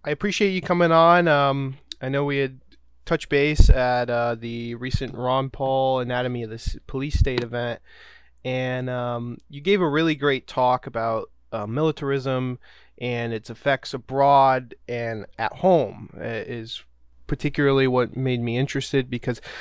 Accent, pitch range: American, 125-150 Hz